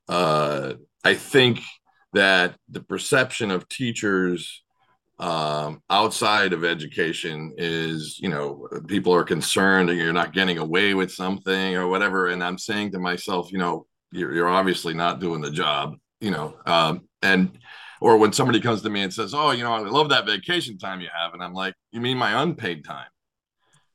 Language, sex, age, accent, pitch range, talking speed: English, male, 40-59, American, 90-115 Hz, 180 wpm